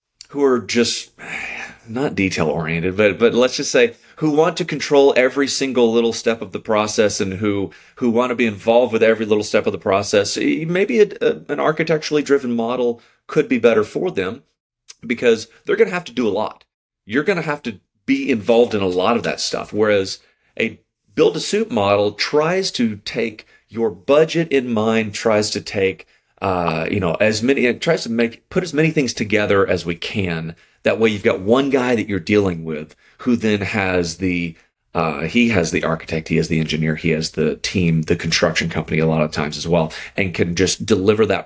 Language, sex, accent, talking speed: English, male, American, 210 wpm